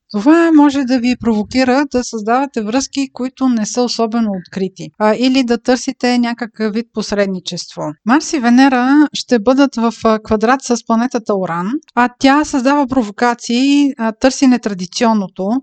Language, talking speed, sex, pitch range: Bulgarian, 135 wpm, female, 210-260 Hz